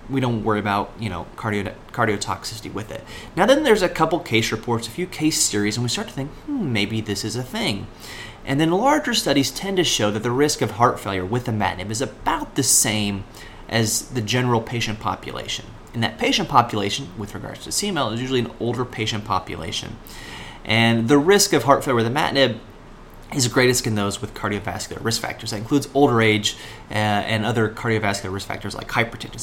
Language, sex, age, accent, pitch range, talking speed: English, male, 30-49, American, 105-130 Hz, 195 wpm